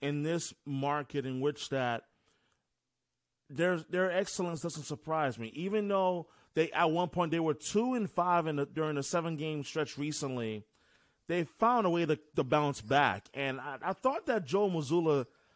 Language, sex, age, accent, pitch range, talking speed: English, male, 30-49, American, 140-185 Hz, 180 wpm